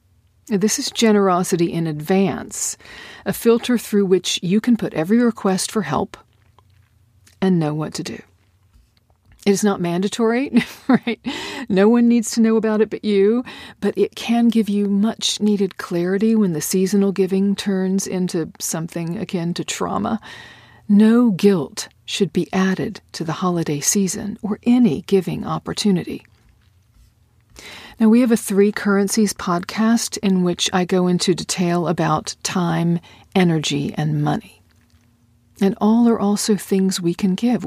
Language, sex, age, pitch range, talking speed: English, female, 40-59, 155-210 Hz, 145 wpm